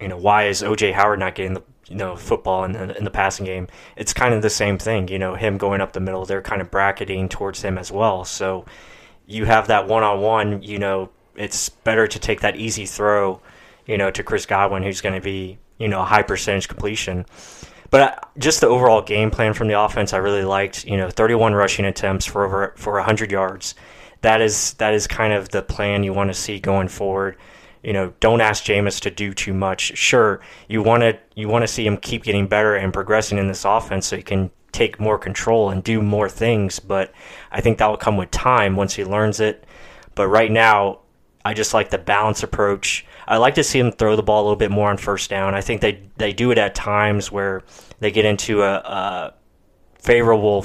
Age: 20-39